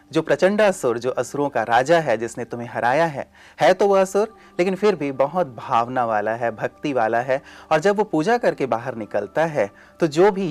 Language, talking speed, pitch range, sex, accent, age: Hindi, 210 wpm, 115-155 Hz, male, native, 30-49